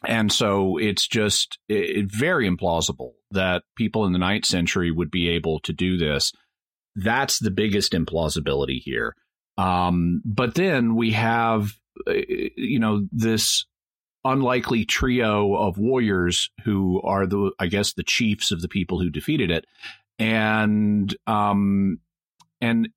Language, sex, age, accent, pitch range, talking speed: English, male, 40-59, American, 90-110 Hz, 135 wpm